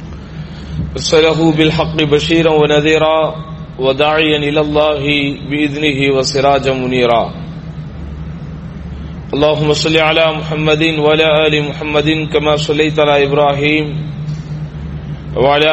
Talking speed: 80 wpm